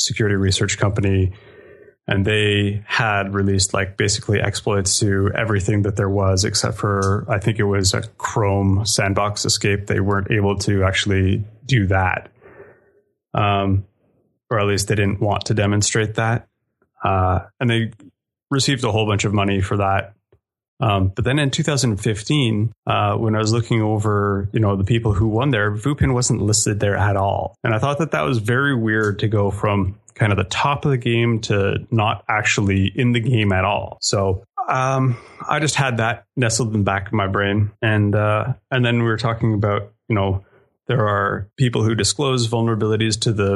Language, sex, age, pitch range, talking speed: English, male, 30-49, 100-115 Hz, 185 wpm